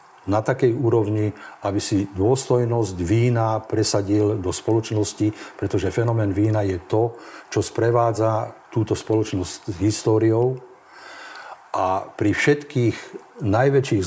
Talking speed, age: 105 wpm, 50-69